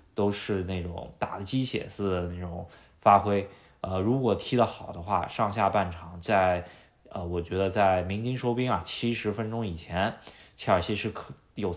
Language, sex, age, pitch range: Chinese, male, 20-39, 85-100 Hz